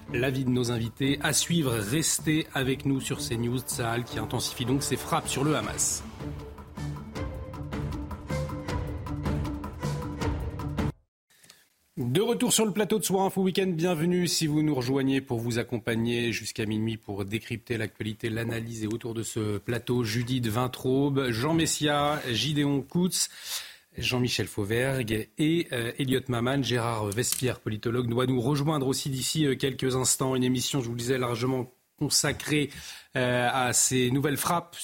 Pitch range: 115-145 Hz